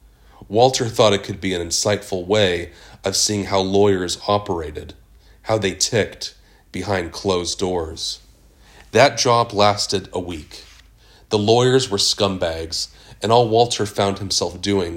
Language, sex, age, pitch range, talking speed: English, male, 30-49, 85-105 Hz, 135 wpm